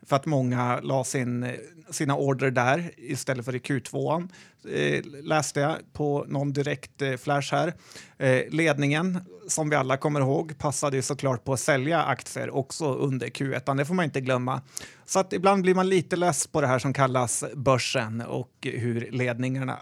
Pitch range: 130-150 Hz